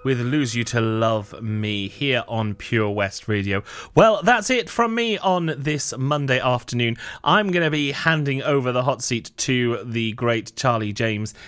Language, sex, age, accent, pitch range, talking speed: English, male, 30-49, British, 115-180 Hz, 180 wpm